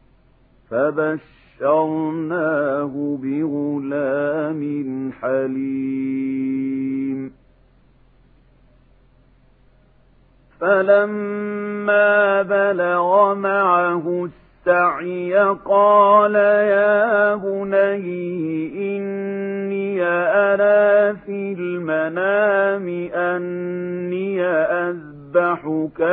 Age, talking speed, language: 50-69, 35 wpm, Arabic